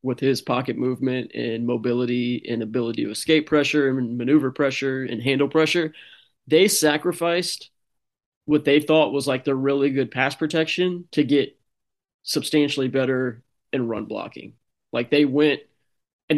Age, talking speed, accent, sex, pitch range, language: 20-39, 145 wpm, American, male, 125-145 Hz, English